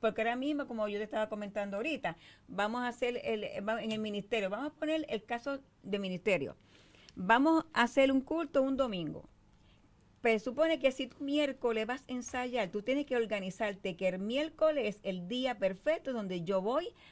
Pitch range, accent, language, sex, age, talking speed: 195-265 Hz, American, Spanish, female, 50-69, 190 wpm